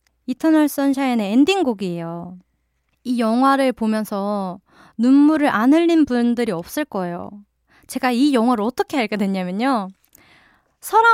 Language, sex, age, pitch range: Korean, female, 20-39, 210-305 Hz